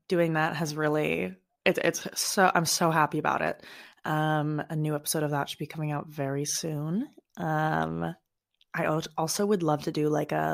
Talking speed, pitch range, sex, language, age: 190 wpm, 155-185 Hz, female, English, 20-39